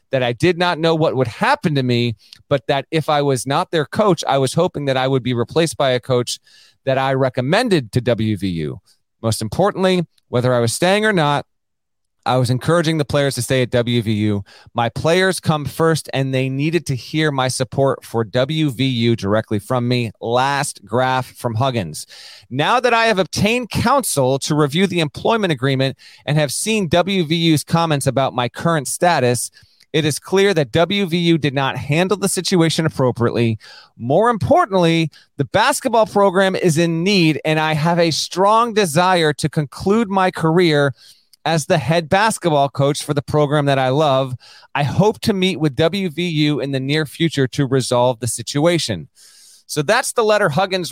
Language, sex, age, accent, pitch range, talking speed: English, male, 30-49, American, 130-170 Hz, 175 wpm